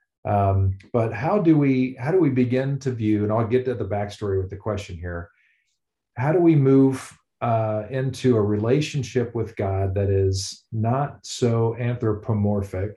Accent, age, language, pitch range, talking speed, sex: American, 40-59, English, 105-130 Hz, 165 wpm, male